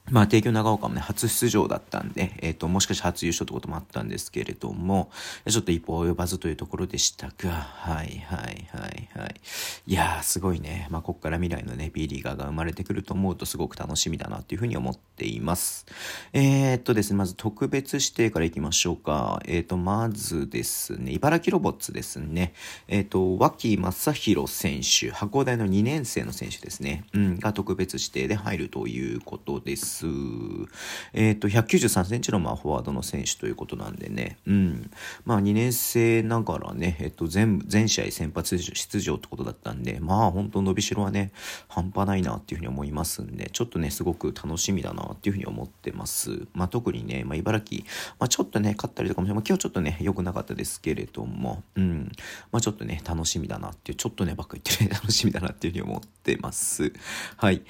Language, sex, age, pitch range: Japanese, male, 40-59, 85-110 Hz